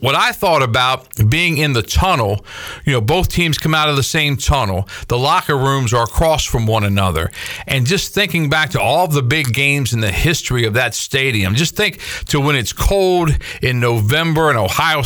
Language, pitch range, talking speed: English, 110-140 Hz, 205 wpm